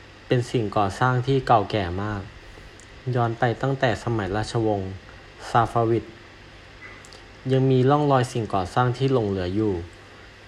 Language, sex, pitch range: Thai, male, 100-120 Hz